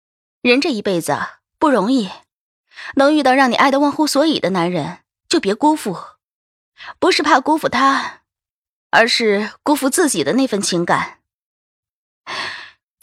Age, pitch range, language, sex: 20-39, 200-290 Hz, Chinese, female